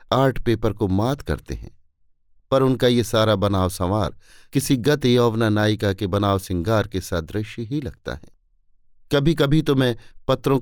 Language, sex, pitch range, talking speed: Hindi, male, 95-130 Hz, 165 wpm